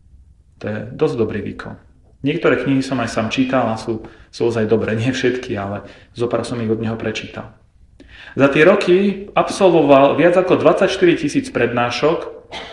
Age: 30-49